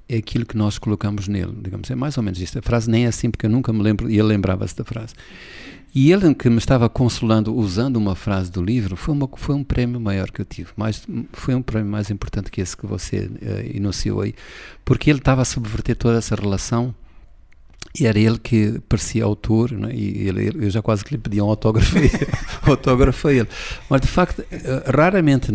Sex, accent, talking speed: male, Portuguese, 215 wpm